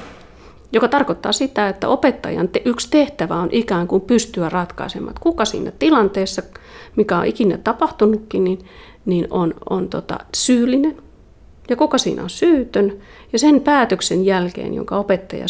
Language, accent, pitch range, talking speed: Finnish, native, 185-240 Hz, 145 wpm